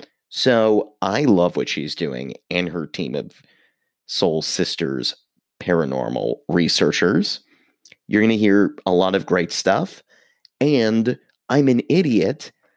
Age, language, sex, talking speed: 30-49, English, male, 125 wpm